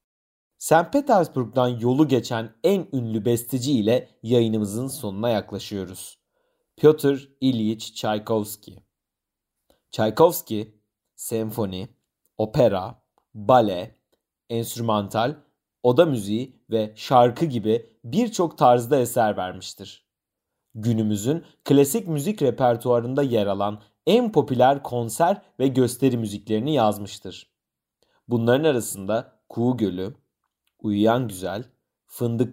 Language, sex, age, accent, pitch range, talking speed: Turkish, male, 40-59, native, 110-140 Hz, 90 wpm